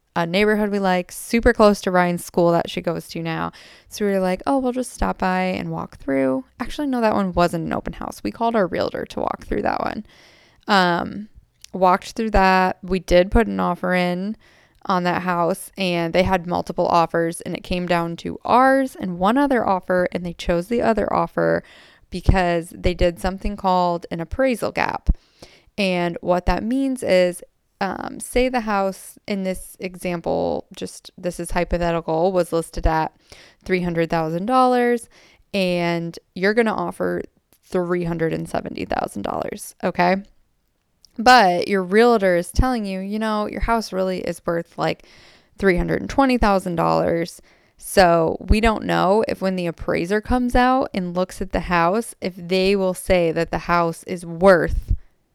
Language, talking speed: English, 165 wpm